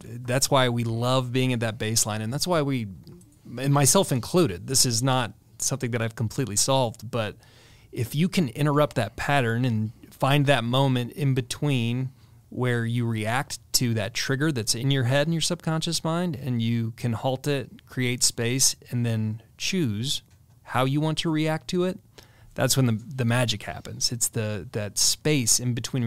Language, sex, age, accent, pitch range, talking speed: English, male, 30-49, American, 115-135 Hz, 180 wpm